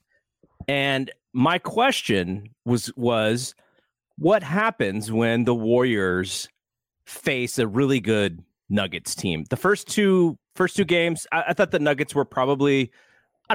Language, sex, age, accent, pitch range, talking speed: English, male, 30-49, American, 110-160 Hz, 135 wpm